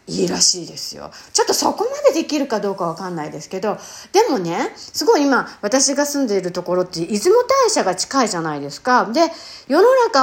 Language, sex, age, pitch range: Japanese, female, 40-59, 175-290 Hz